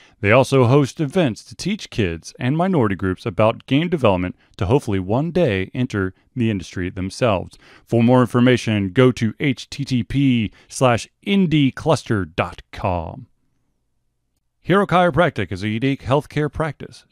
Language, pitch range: English, 100-135 Hz